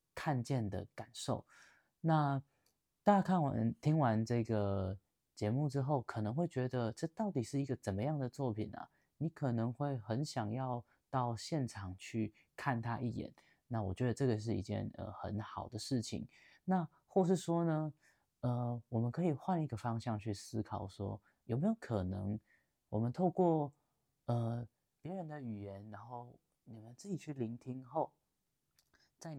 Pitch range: 105-145 Hz